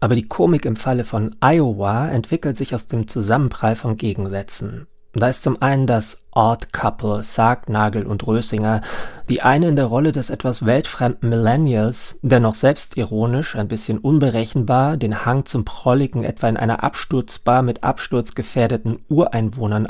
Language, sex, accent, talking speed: German, male, German, 155 wpm